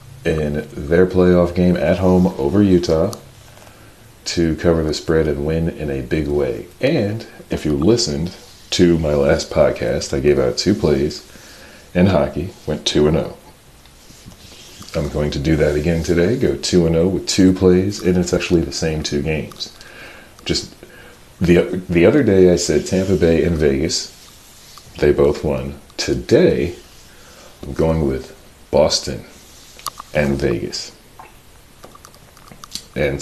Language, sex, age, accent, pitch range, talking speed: English, male, 40-59, American, 75-95 Hz, 145 wpm